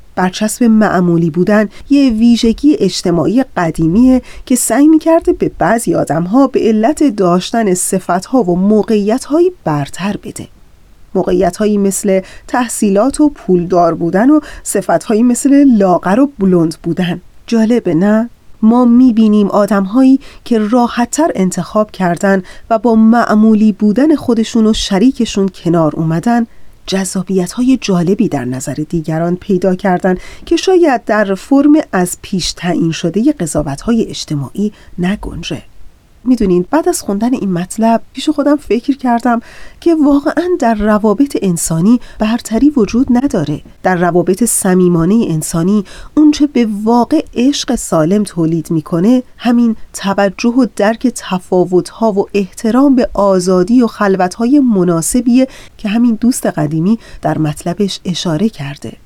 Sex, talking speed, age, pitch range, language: female, 125 wpm, 30-49, 180-245 Hz, Persian